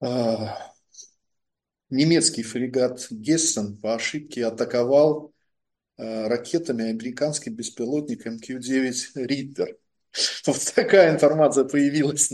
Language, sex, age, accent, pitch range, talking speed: Russian, male, 20-39, native, 125-150 Hz, 80 wpm